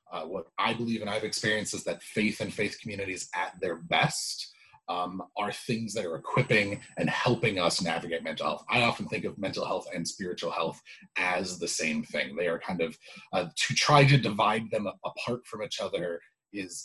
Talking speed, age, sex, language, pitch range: 200 wpm, 30-49, male, English, 100-135 Hz